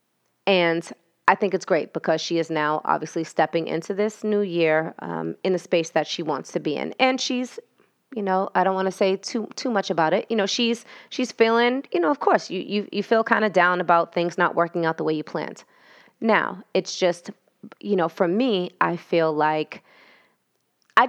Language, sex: English, female